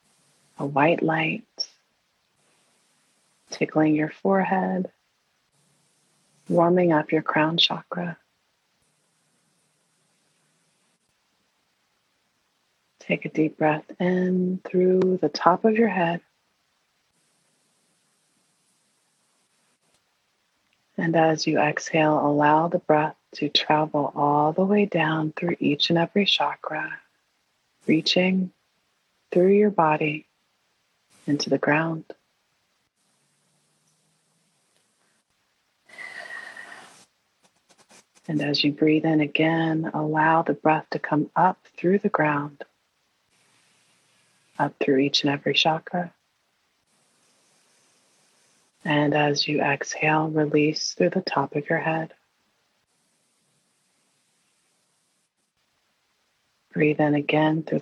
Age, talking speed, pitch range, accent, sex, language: 30-49, 85 wpm, 150-180 Hz, American, female, English